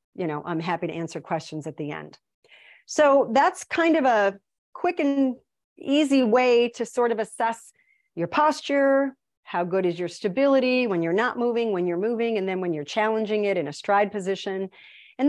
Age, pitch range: 40-59, 175-235 Hz